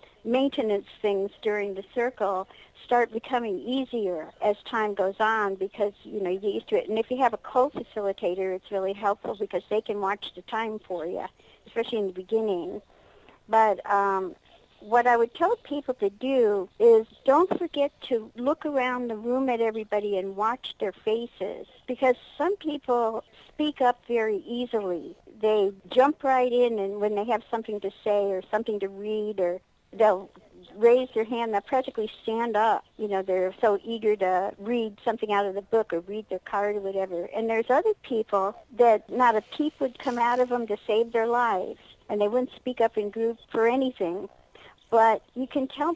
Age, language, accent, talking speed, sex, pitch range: 50-69, English, American, 185 wpm, male, 205-245 Hz